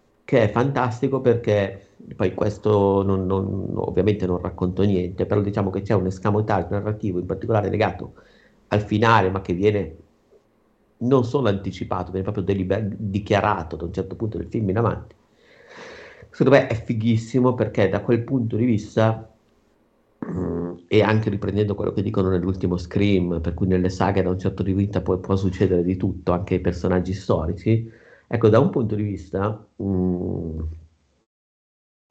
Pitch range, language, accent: 95-115 Hz, Italian, native